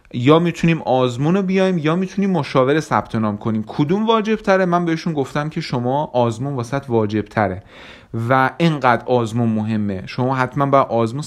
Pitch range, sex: 115-155 Hz, male